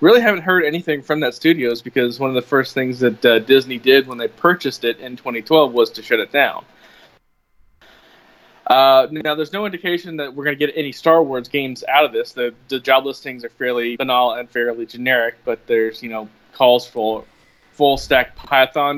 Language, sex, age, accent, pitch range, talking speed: English, male, 20-39, American, 120-145 Hz, 195 wpm